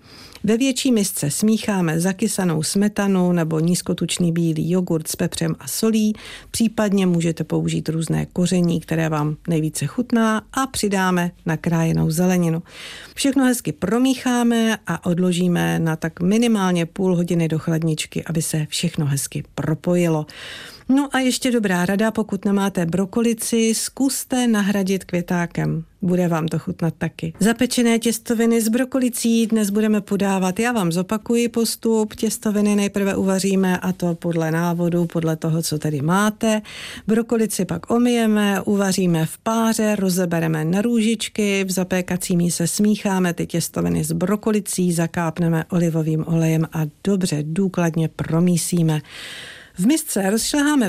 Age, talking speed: 50-69, 130 wpm